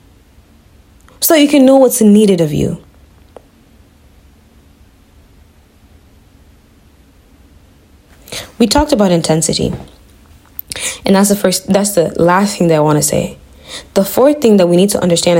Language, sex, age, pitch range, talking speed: English, female, 20-39, 160-245 Hz, 130 wpm